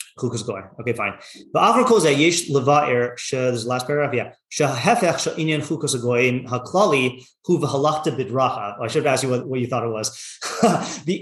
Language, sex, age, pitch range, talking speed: English, male, 30-49, 130-155 Hz, 185 wpm